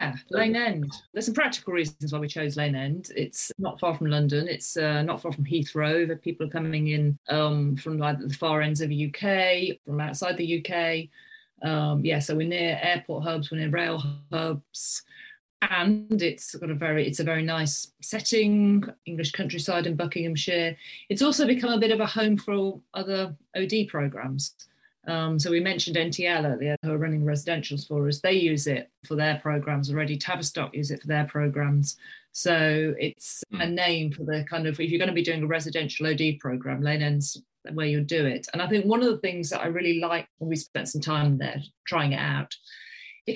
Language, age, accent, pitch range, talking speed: English, 30-49, British, 150-185 Hz, 200 wpm